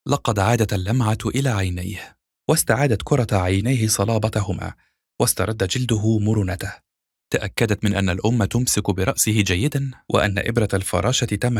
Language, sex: Arabic, male